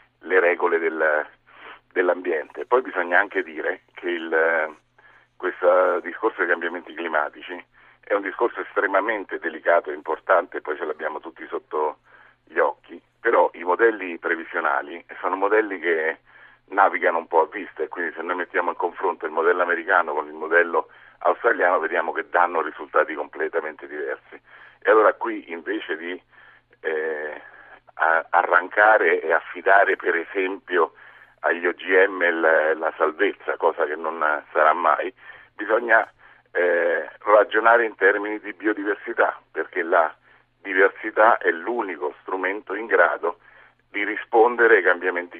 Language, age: Italian, 50-69